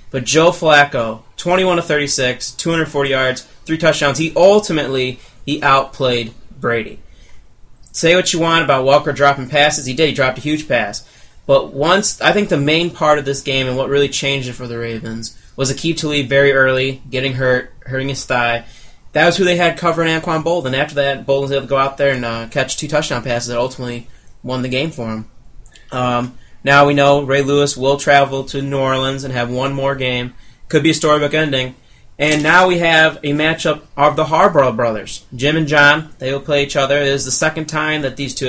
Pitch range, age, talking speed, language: 130-155 Hz, 20-39, 210 wpm, English